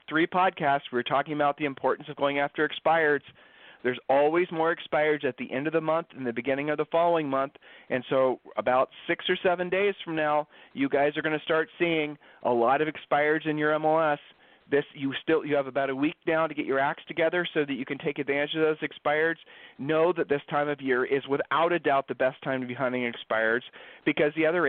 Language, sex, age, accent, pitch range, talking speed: English, male, 40-59, American, 135-165 Hz, 230 wpm